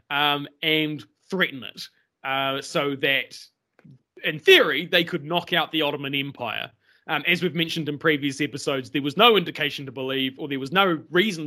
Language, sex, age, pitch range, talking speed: English, male, 30-49, 145-175 Hz, 180 wpm